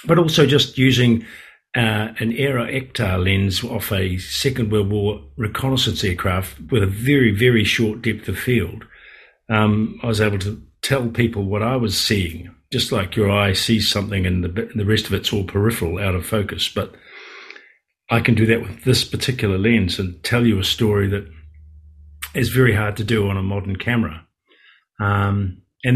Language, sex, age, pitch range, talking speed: English, male, 50-69, 100-115 Hz, 180 wpm